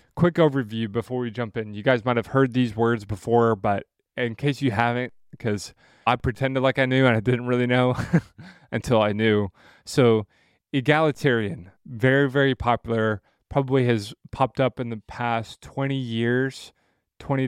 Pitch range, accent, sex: 115-135 Hz, American, male